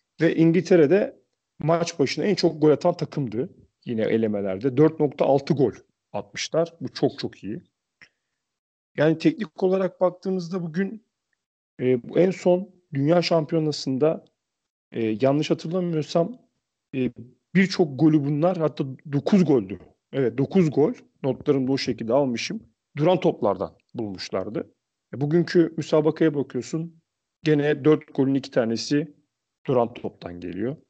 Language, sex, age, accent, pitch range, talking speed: Turkish, male, 40-59, native, 135-170 Hz, 120 wpm